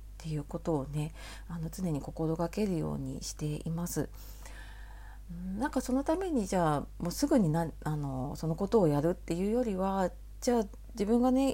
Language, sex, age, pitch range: Japanese, female, 40-59, 145-210 Hz